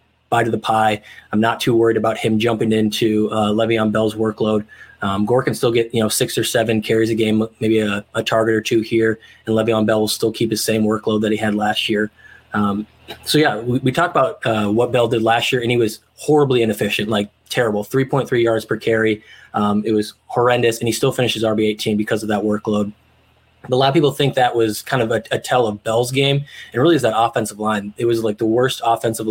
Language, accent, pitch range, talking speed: English, American, 110-120 Hz, 235 wpm